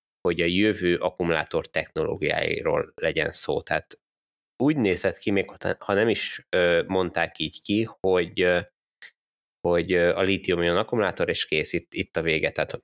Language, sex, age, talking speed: Hungarian, male, 20-39, 145 wpm